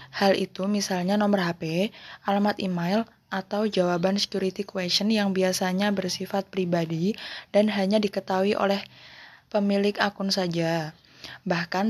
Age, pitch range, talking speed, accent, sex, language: 20-39, 185-205 Hz, 115 wpm, native, female, Indonesian